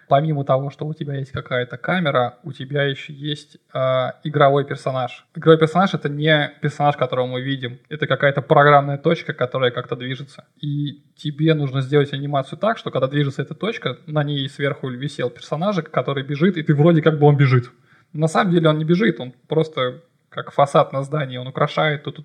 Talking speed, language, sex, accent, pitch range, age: 190 wpm, Russian, male, native, 140-160 Hz, 20-39